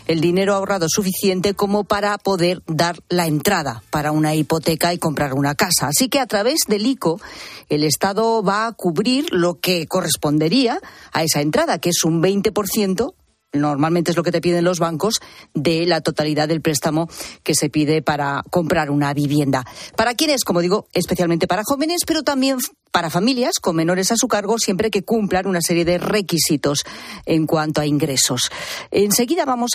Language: Spanish